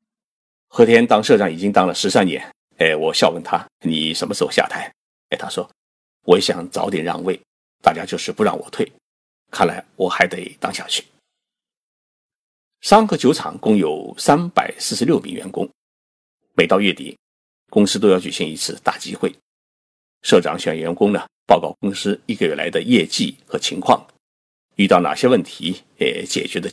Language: Chinese